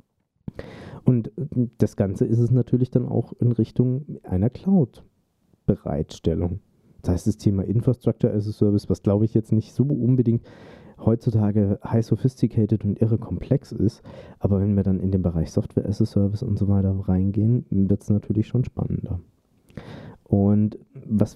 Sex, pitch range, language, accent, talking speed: male, 95-115 Hz, German, German, 155 wpm